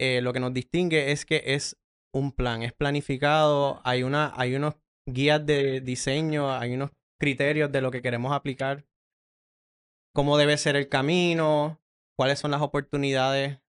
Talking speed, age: 160 wpm, 20-39